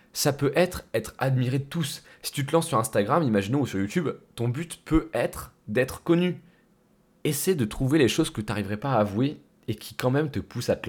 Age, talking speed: 20-39, 230 wpm